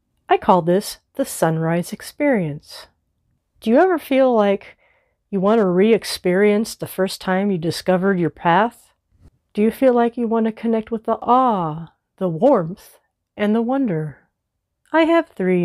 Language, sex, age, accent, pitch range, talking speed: English, female, 40-59, American, 170-250 Hz, 155 wpm